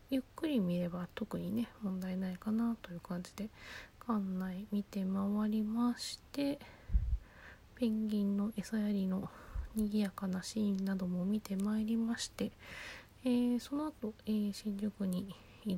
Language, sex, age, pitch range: Japanese, female, 20-39, 190-220 Hz